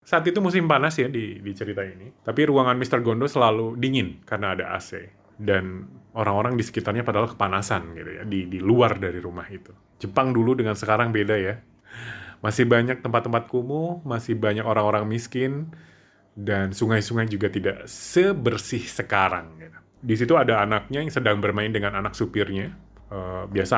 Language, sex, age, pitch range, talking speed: Indonesian, male, 30-49, 100-135 Hz, 160 wpm